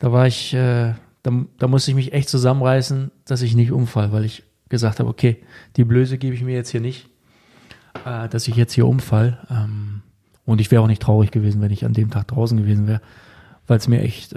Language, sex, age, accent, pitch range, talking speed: German, male, 20-39, German, 115-125 Hz, 225 wpm